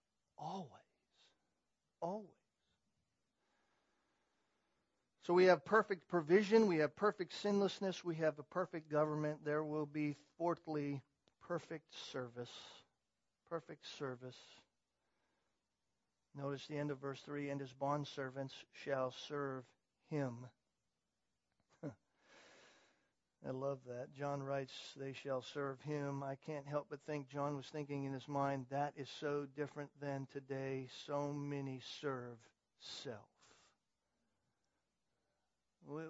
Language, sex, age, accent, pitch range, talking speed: English, male, 50-69, American, 140-180 Hz, 115 wpm